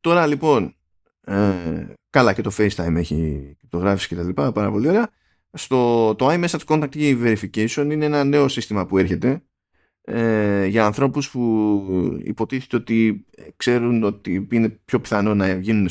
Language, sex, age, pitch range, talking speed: Greek, male, 20-39, 90-125 Hz, 145 wpm